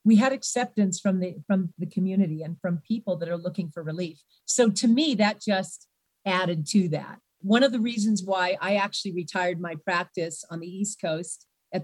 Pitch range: 180-220 Hz